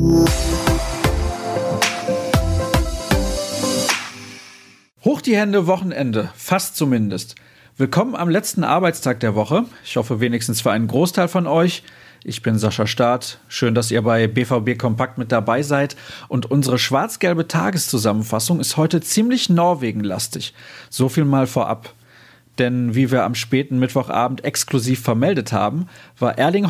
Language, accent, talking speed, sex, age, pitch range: German, German, 125 wpm, male, 40-59, 115-160 Hz